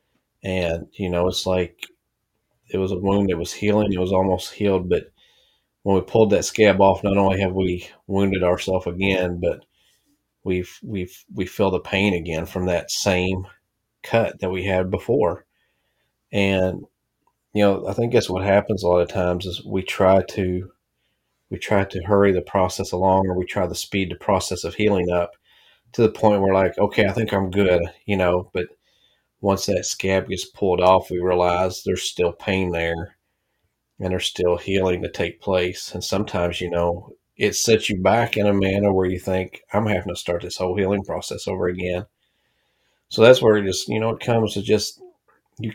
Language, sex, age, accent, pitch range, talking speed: English, male, 30-49, American, 90-100 Hz, 195 wpm